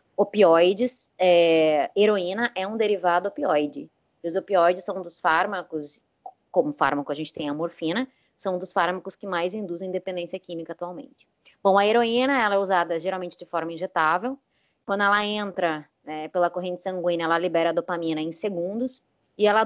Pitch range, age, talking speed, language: 175-245 Hz, 20-39, 160 wpm, Portuguese